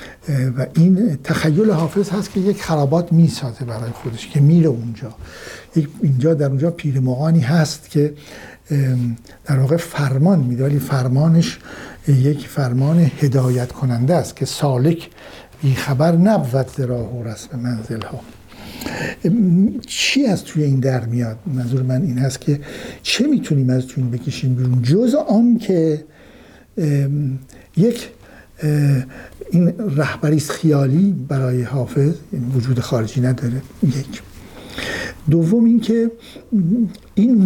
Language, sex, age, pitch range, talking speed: Persian, male, 60-79, 130-170 Hz, 125 wpm